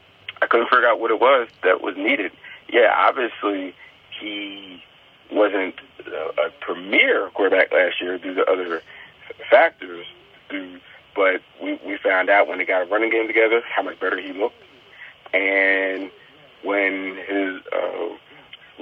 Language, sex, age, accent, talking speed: English, male, 40-59, American, 135 wpm